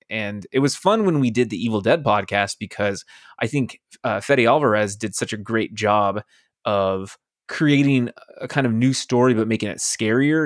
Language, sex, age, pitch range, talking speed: English, male, 20-39, 105-130 Hz, 190 wpm